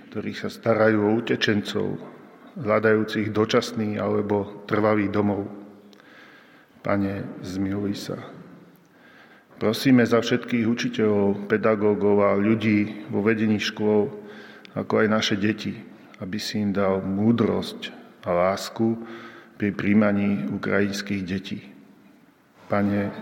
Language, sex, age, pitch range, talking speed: Slovak, male, 40-59, 100-110 Hz, 100 wpm